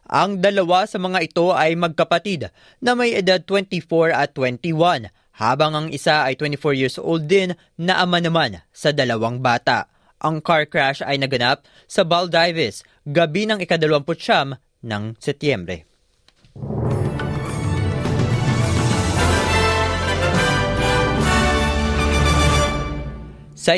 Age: 20-39